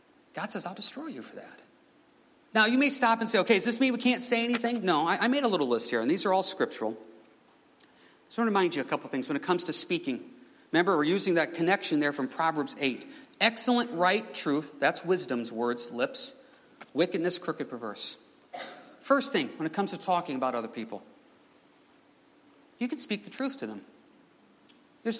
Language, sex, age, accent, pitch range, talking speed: English, male, 40-59, American, 170-255 Hz, 200 wpm